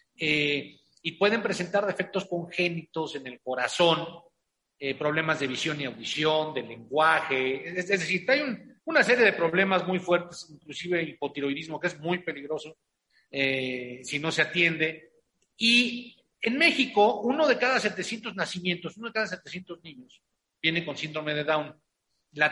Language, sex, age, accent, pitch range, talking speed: Spanish, male, 40-59, Mexican, 145-200 Hz, 150 wpm